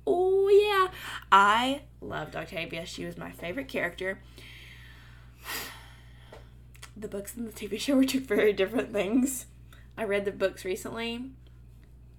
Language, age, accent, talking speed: English, 20-39, American, 130 wpm